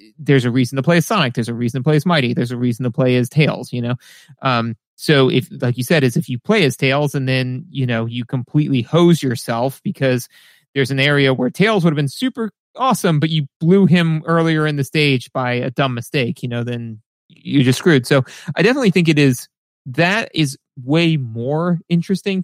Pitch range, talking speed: 130-160 Hz, 220 wpm